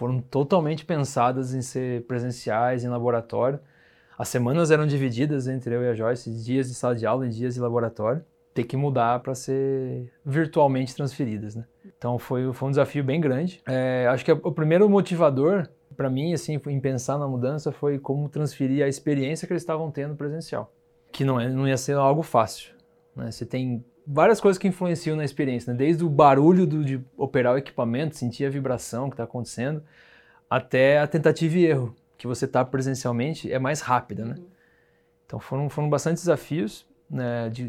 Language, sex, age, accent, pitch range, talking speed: Portuguese, male, 20-39, Brazilian, 125-155 Hz, 185 wpm